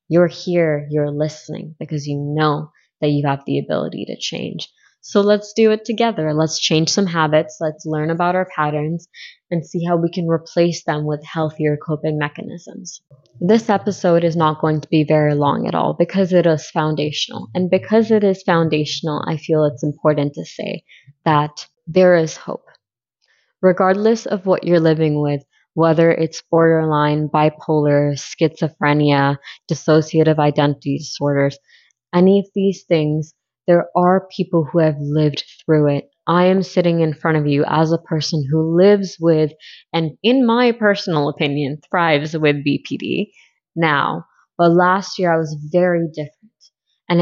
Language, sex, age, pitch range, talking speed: English, female, 20-39, 150-180 Hz, 160 wpm